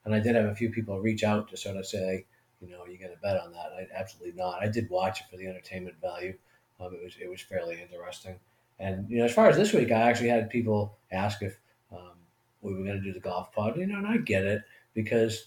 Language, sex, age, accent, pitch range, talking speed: English, male, 40-59, American, 95-115 Hz, 270 wpm